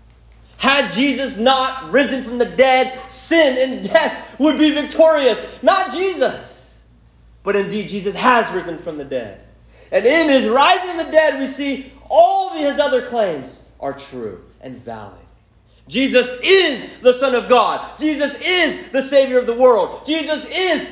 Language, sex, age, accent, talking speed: English, male, 30-49, American, 160 wpm